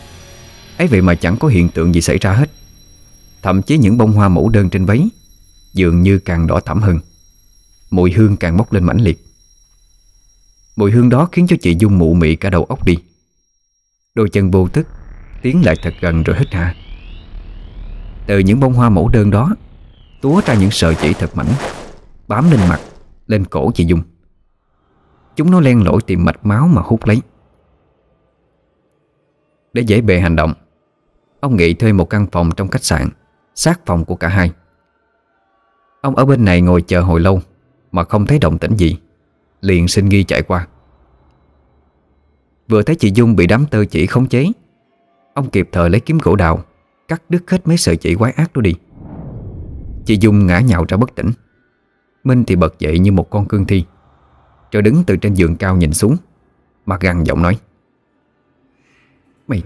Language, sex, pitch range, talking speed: Vietnamese, male, 85-110 Hz, 185 wpm